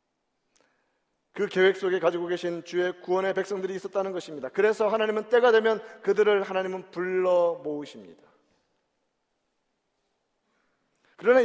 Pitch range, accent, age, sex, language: 160-205 Hz, native, 40-59, male, Korean